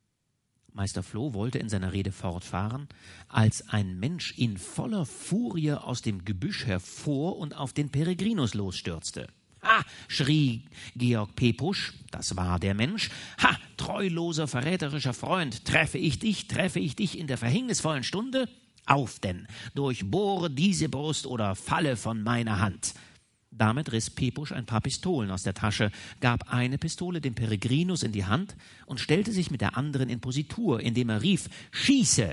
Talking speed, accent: 155 wpm, German